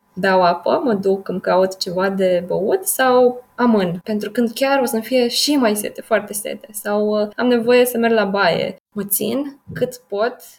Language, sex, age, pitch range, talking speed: Romanian, female, 20-39, 200-240 Hz, 185 wpm